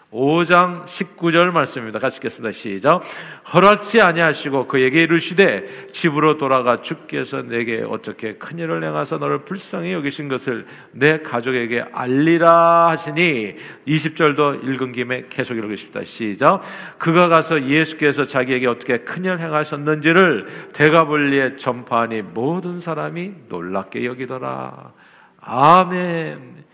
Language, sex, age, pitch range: Korean, male, 50-69, 125-175 Hz